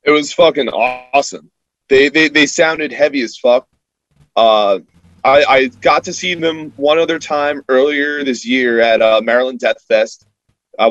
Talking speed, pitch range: 165 wpm, 115-150 Hz